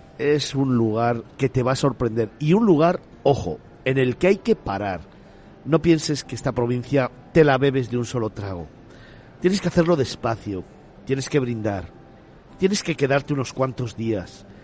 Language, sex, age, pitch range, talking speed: Spanish, male, 50-69, 115-145 Hz, 175 wpm